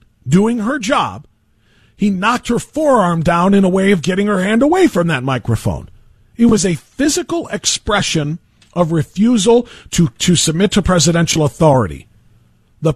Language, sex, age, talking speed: English, male, 40-59, 155 wpm